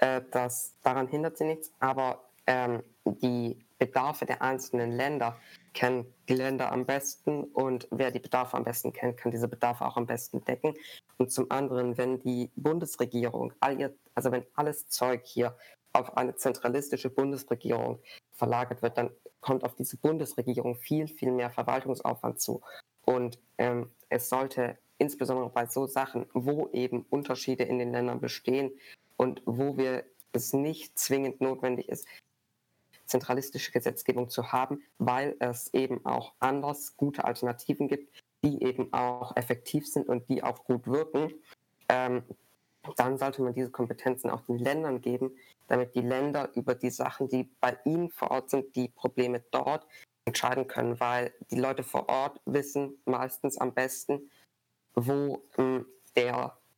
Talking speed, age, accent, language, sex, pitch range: 150 wpm, 20-39, German, German, female, 125-135 Hz